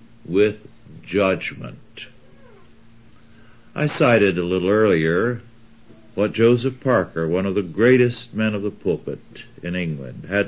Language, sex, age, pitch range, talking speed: English, male, 60-79, 100-120 Hz, 120 wpm